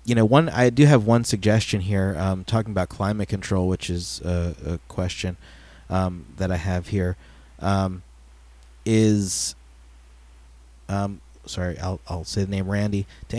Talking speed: 155 wpm